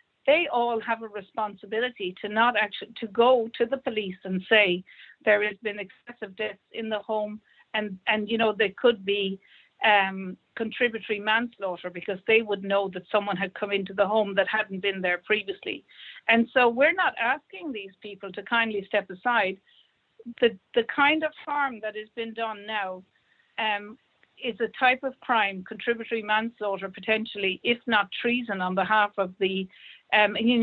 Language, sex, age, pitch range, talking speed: English, female, 50-69, 200-230 Hz, 175 wpm